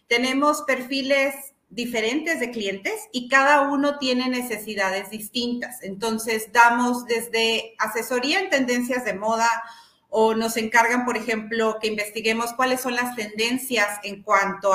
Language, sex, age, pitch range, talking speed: Spanish, female, 40-59, 215-270 Hz, 130 wpm